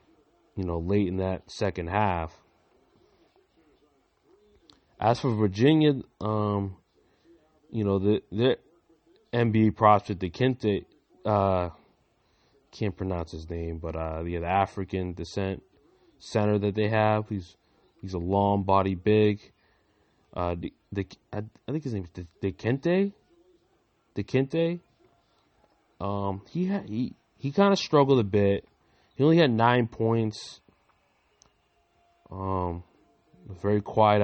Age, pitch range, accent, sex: 20-39, 90-110 Hz, American, male